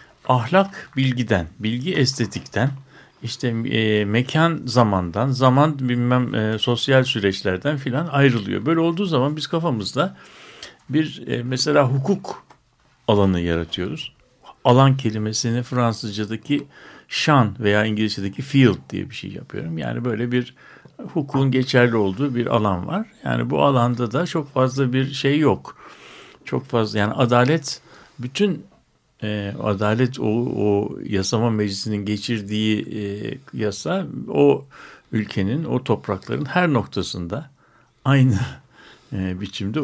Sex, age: male, 60-79